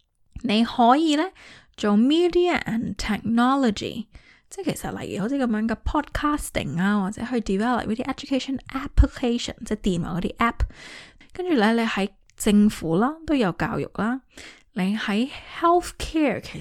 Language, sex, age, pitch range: Chinese, female, 10-29, 185-250 Hz